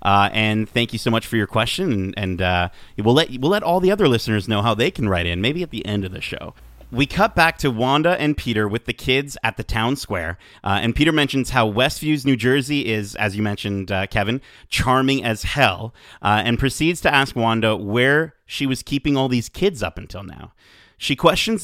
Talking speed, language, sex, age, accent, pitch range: 225 wpm, English, male, 30-49, American, 105-140 Hz